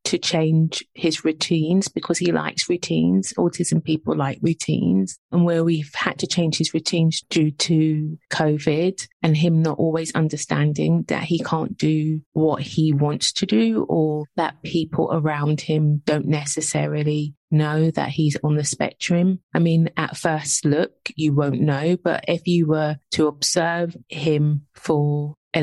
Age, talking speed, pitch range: 30-49, 155 wpm, 155-175 Hz